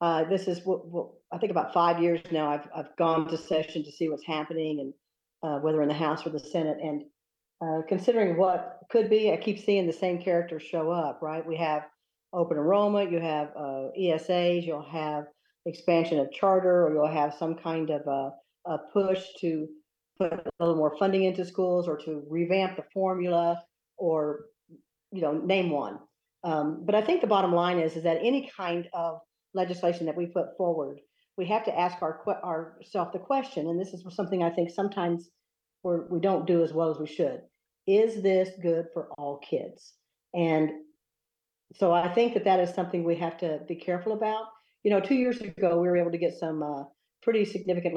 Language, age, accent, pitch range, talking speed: English, 50-69, American, 160-190 Hz, 200 wpm